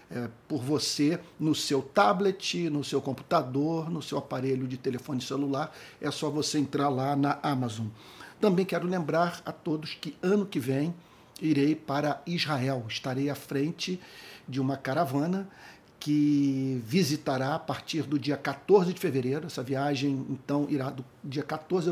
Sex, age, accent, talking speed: male, 50-69, Brazilian, 150 wpm